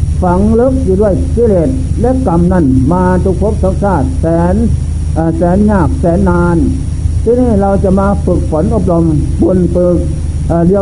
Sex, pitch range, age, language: male, 80-95 Hz, 60-79, Thai